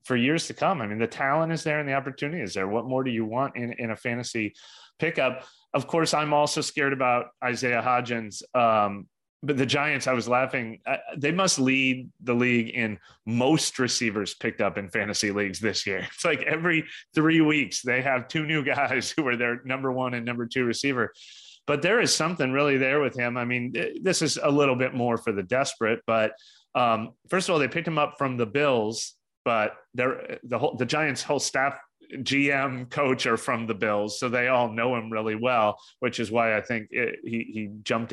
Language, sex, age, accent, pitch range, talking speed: English, male, 30-49, American, 115-140 Hz, 215 wpm